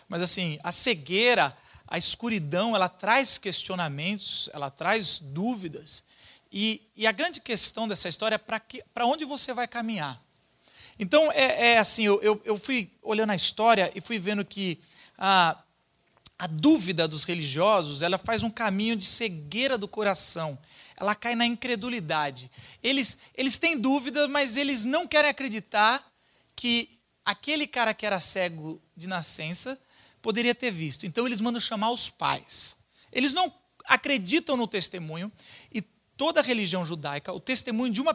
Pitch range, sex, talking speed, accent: 180-255 Hz, male, 150 wpm, Brazilian